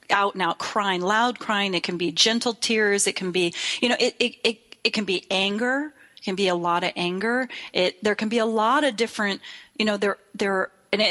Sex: female